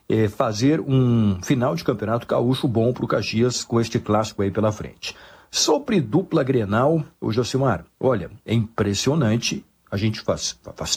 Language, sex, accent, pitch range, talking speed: Portuguese, male, Brazilian, 105-135 Hz, 160 wpm